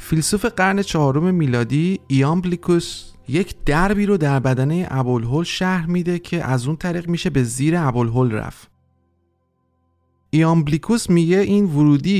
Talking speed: 135 wpm